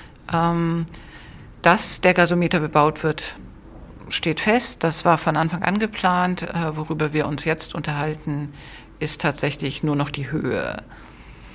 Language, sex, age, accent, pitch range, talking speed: German, female, 50-69, German, 155-180 Hz, 125 wpm